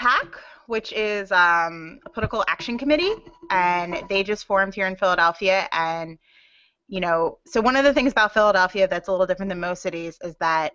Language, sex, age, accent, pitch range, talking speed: English, female, 20-39, American, 170-215 Hz, 190 wpm